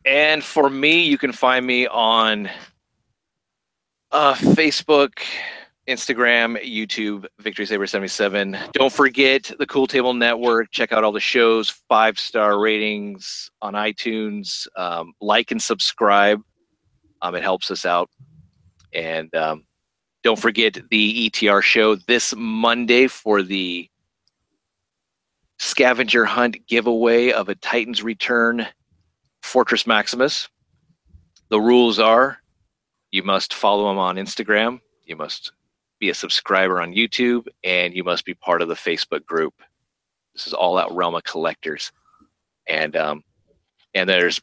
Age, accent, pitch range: 30-49, American, 100-125 Hz